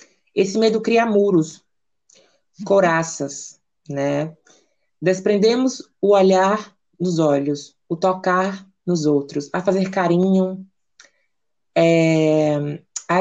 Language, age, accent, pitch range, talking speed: Portuguese, 20-39, Brazilian, 155-190 Hz, 85 wpm